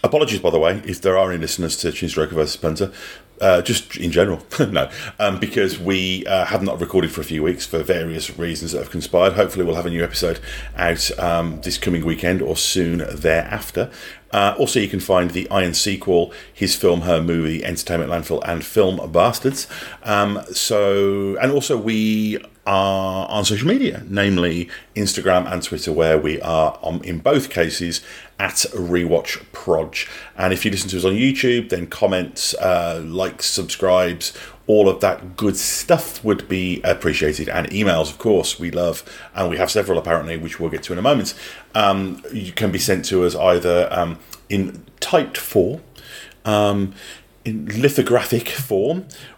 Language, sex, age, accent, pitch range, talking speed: English, male, 40-59, British, 85-100 Hz, 175 wpm